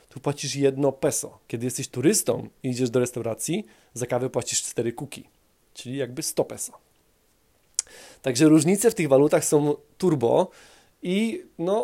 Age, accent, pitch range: 20-39, native, 125-175 Hz